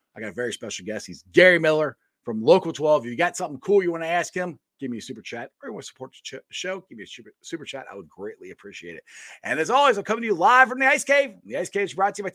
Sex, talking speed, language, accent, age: male, 315 wpm, English, American, 30-49